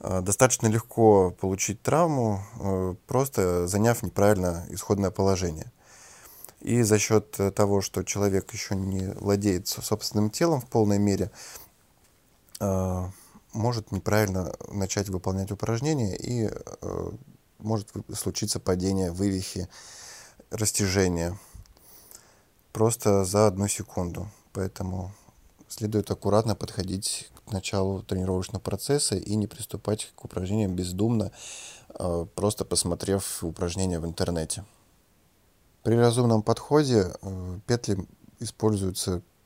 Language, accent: Russian, native